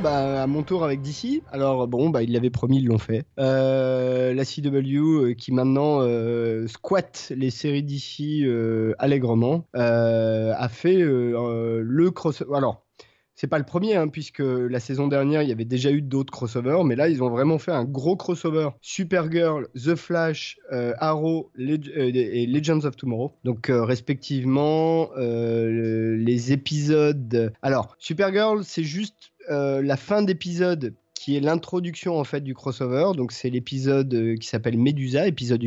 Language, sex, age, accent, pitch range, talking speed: French, male, 30-49, French, 125-160 Hz, 170 wpm